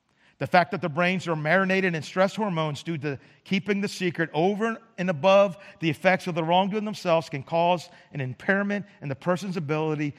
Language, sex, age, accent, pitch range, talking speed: English, male, 50-69, American, 170-215 Hz, 190 wpm